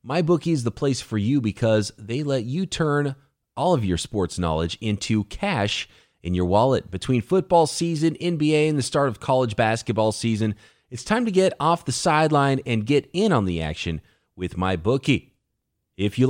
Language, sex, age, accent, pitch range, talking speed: English, male, 30-49, American, 110-165 Hz, 180 wpm